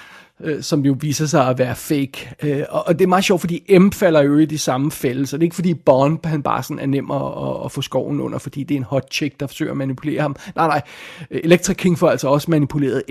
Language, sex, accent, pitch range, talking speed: Danish, male, native, 145-200 Hz, 245 wpm